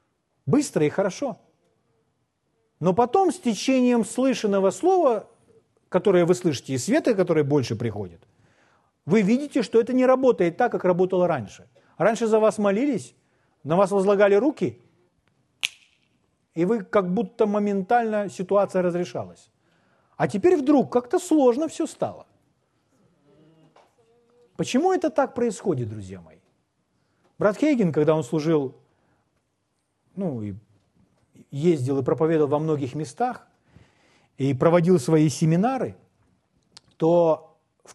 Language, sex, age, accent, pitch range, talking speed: Russian, male, 40-59, native, 150-230 Hz, 115 wpm